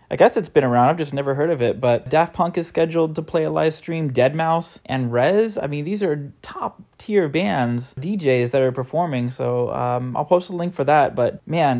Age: 20-39